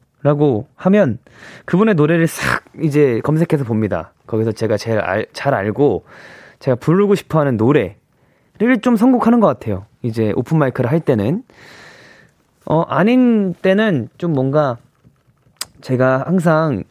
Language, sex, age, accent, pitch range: Korean, male, 20-39, native, 125-180 Hz